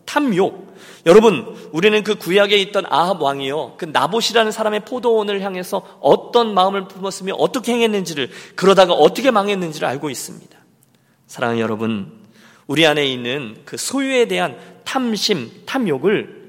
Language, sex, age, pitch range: Korean, male, 40-59, 155-245 Hz